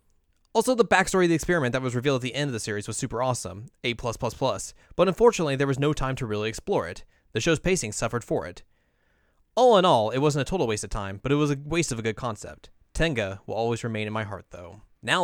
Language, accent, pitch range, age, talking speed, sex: English, American, 110-150 Hz, 20-39, 250 wpm, male